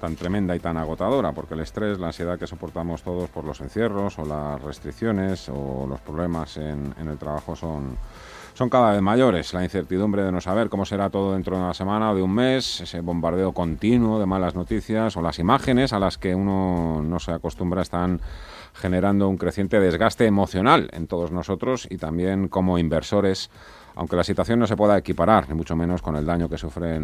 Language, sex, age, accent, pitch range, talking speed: Spanish, male, 40-59, Spanish, 85-110 Hz, 200 wpm